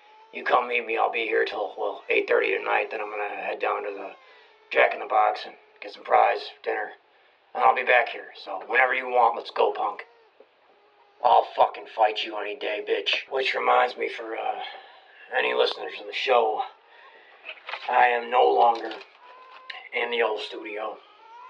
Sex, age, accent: male, 40-59, American